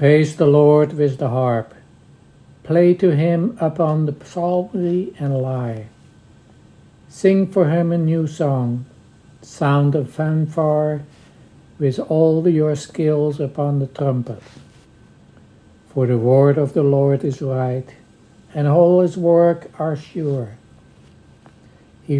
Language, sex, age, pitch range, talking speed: English, male, 60-79, 135-160 Hz, 120 wpm